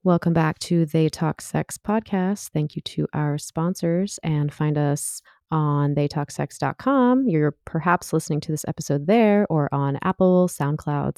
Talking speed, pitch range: 150 wpm, 145-180 Hz